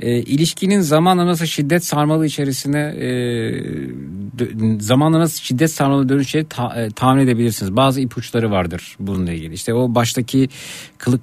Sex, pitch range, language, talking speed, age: male, 110-150 Hz, Turkish, 140 wpm, 50-69